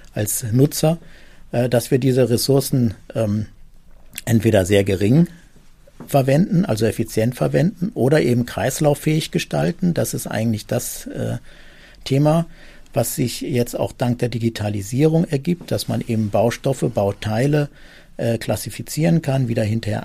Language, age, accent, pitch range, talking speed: German, 50-69, German, 115-145 Hz, 130 wpm